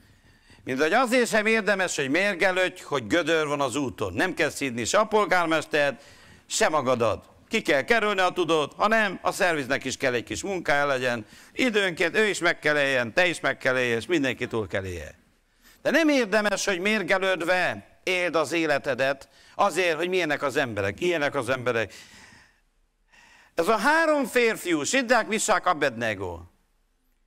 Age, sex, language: 60-79, male, Hungarian